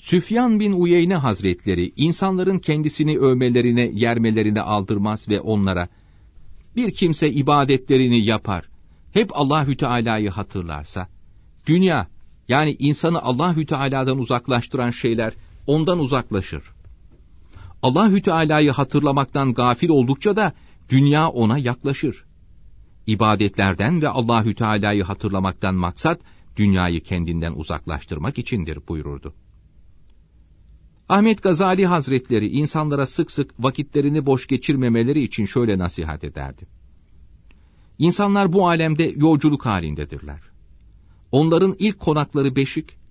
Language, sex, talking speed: Turkish, male, 95 wpm